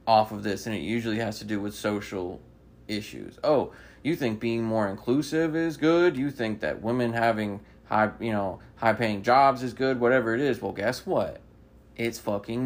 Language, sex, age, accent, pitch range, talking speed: English, male, 20-39, American, 95-120 Hz, 190 wpm